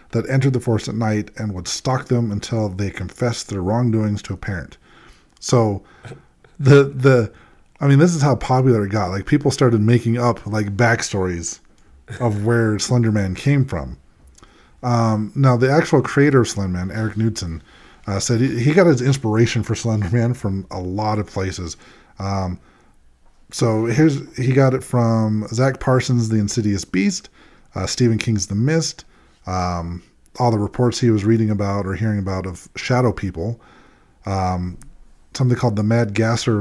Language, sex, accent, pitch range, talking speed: English, male, American, 100-125 Hz, 165 wpm